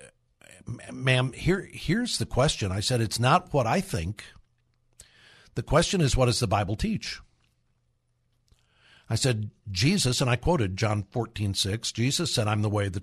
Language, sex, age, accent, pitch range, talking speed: English, male, 60-79, American, 110-130 Hz, 160 wpm